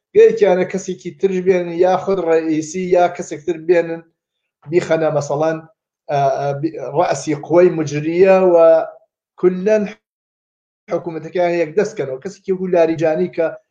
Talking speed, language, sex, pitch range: 115 wpm, Persian, male, 155-190 Hz